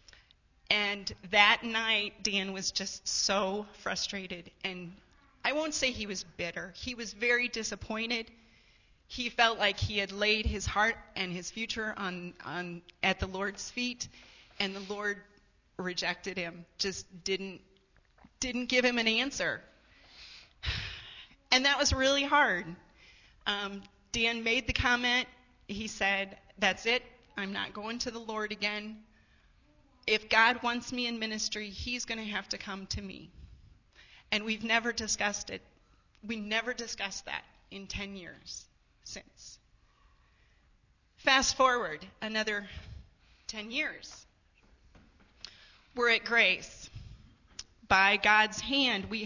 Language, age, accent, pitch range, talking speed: English, 30-49, American, 195-235 Hz, 130 wpm